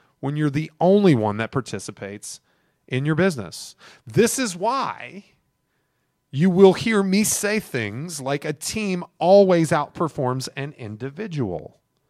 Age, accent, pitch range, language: 30-49, American, 120-180 Hz, English